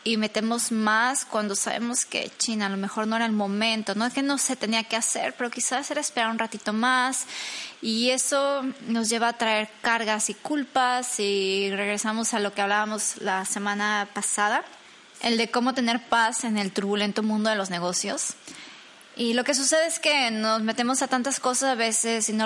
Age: 20-39